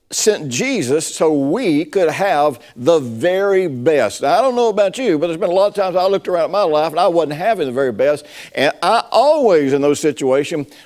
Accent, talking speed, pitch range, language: American, 225 wpm, 135-200 Hz, English